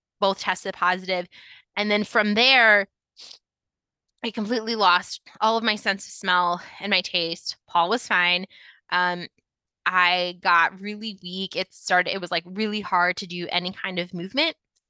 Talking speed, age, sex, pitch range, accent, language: 160 wpm, 20-39, female, 180-220 Hz, American, English